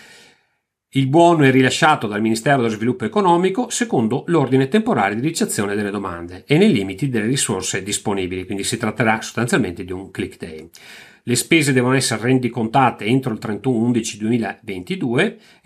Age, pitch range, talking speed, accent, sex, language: 40-59, 100-135 Hz, 145 wpm, native, male, Italian